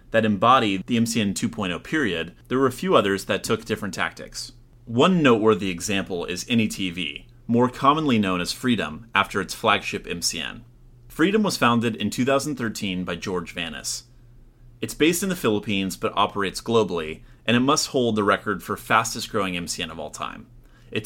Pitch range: 100-125 Hz